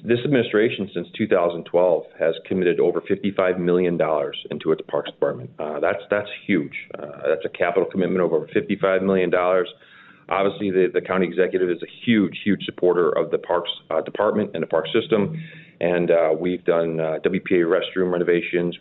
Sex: male